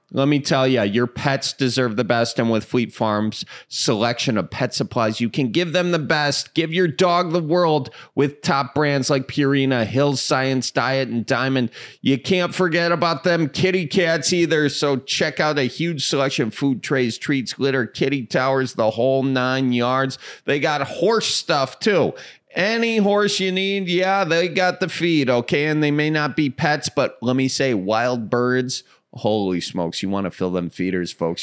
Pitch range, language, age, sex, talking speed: 115-150 Hz, English, 30-49, male, 190 wpm